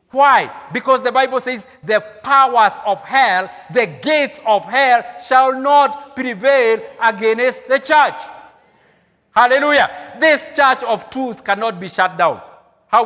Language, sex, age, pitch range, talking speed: English, male, 50-69, 195-260 Hz, 135 wpm